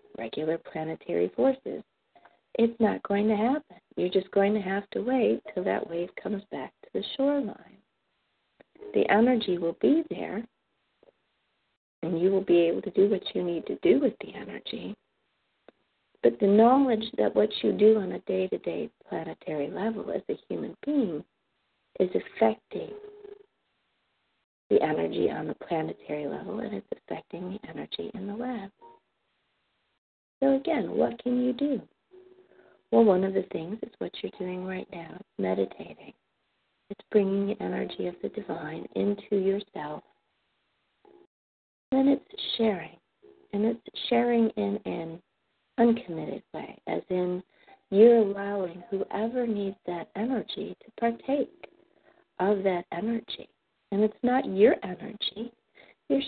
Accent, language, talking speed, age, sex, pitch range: American, English, 140 wpm, 50-69, female, 190-255 Hz